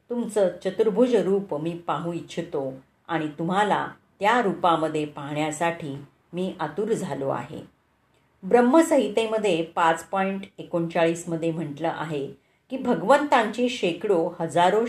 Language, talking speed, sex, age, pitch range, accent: Marathi, 105 wpm, female, 40-59, 165-215 Hz, native